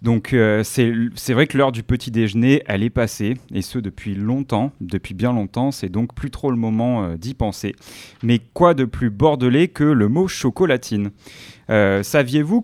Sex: male